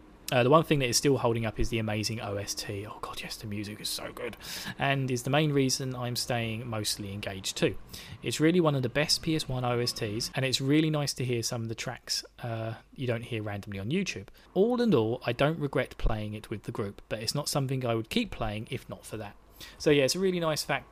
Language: English